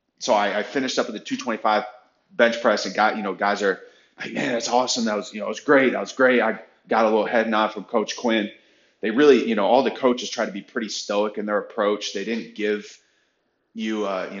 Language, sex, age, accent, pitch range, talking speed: English, male, 20-39, American, 100-115 Hz, 250 wpm